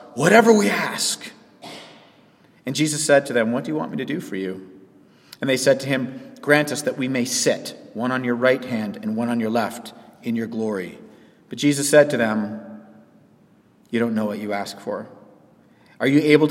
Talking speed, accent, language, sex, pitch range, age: 205 wpm, American, English, male, 125-155 Hz, 40-59